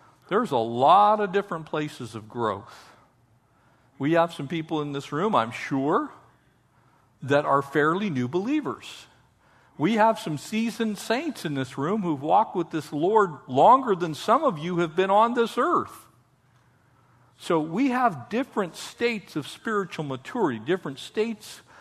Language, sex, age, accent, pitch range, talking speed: English, male, 50-69, American, 130-200 Hz, 150 wpm